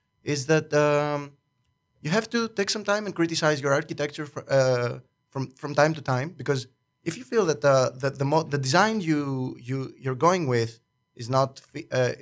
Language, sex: English, male